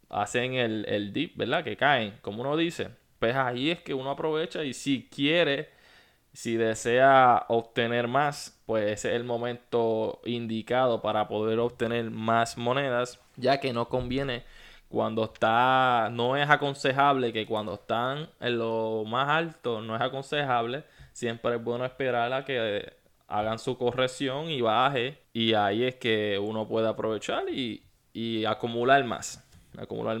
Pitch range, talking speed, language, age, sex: 115-135 Hz, 150 wpm, Spanish, 20-39, male